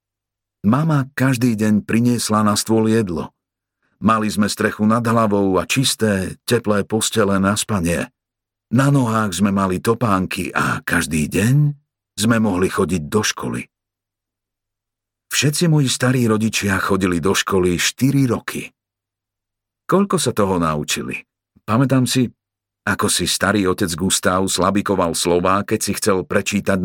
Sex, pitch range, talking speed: male, 95-115 Hz, 125 wpm